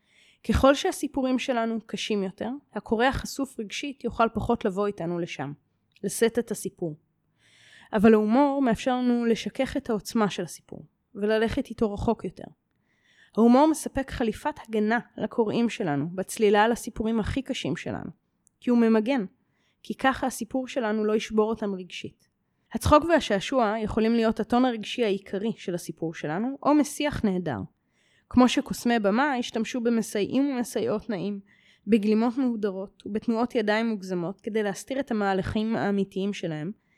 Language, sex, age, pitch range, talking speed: Hebrew, female, 20-39, 200-245 Hz, 135 wpm